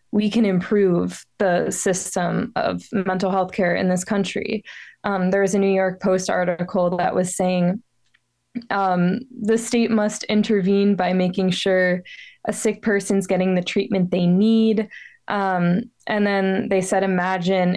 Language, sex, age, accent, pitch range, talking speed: English, female, 20-39, American, 185-215 Hz, 150 wpm